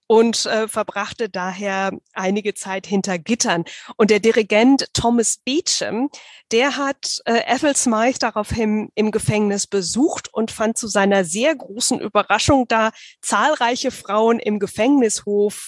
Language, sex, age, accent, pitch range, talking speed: German, female, 20-39, German, 200-240 Hz, 130 wpm